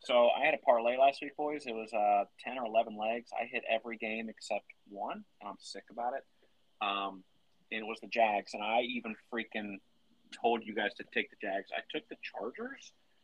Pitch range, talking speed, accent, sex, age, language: 105-120 Hz, 210 wpm, American, male, 30-49, English